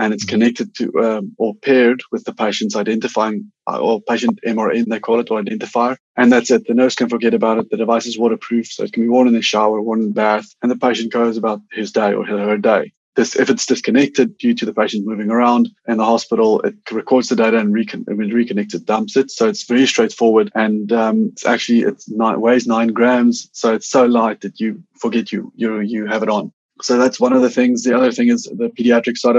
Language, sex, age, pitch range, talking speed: English, male, 20-39, 110-125 Hz, 235 wpm